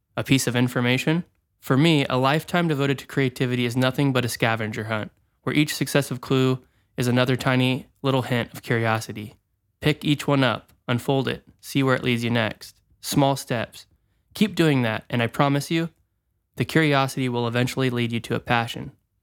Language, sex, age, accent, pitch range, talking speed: English, male, 20-39, American, 115-140 Hz, 180 wpm